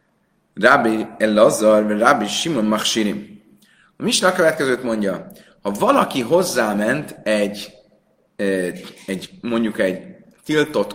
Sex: male